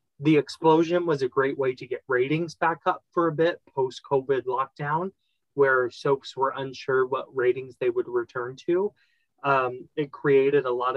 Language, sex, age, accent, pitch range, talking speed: English, male, 30-49, American, 135-170 Hz, 175 wpm